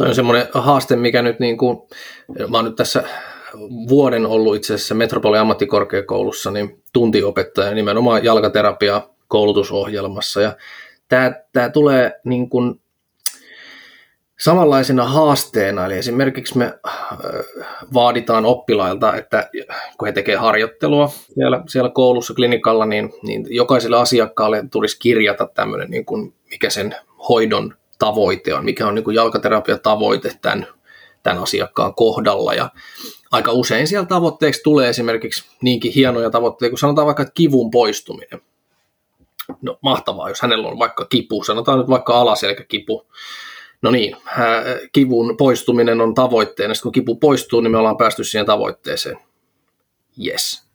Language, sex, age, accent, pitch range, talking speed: Finnish, male, 20-39, native, 115-130 Hz, 130 wpm